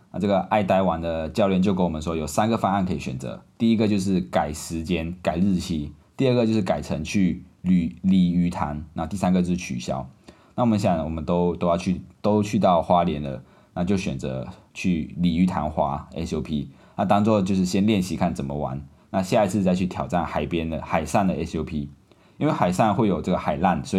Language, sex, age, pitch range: Chinese, male, 20-39, 80-95 Hz